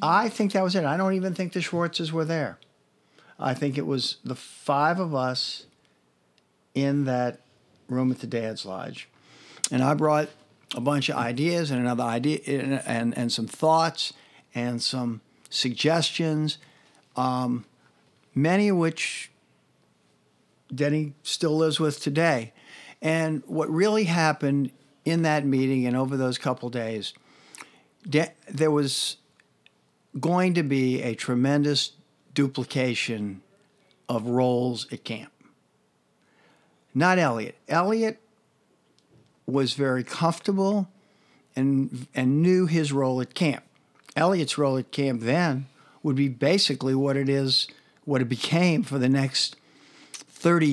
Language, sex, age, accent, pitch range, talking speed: English, male, 50-69, American, 125-165 Hz, 130 wpm